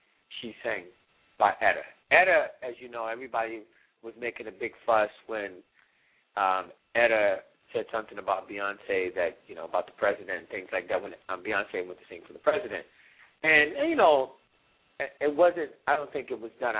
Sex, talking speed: male, 190 wpm